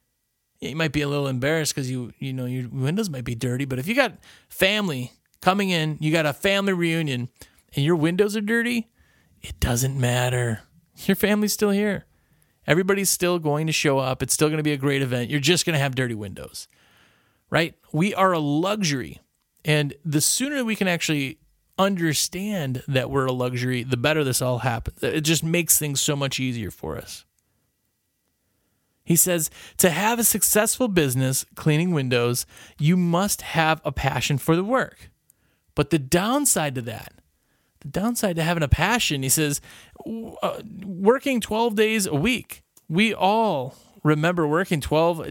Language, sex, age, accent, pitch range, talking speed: English, male, 30-49, American, 135-190 Hz, 175 wpm